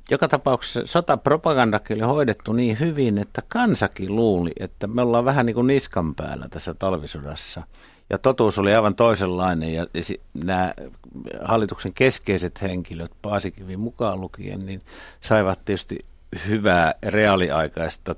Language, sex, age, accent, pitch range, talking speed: Finnish, male, 60-79, native, 85-110 Hz, 125 wpm